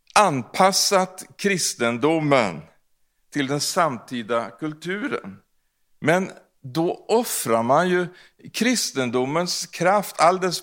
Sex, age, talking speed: male, 60-79, 80 wpm